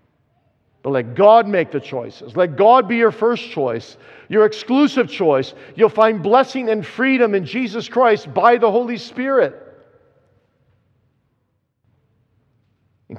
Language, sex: English, male